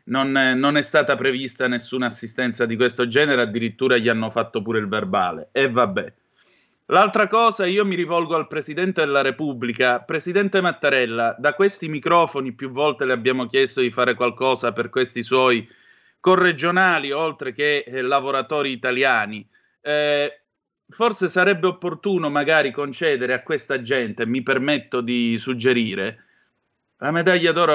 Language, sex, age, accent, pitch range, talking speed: Italian, male, 30-49, native, 125-165 Hz, 145 wpm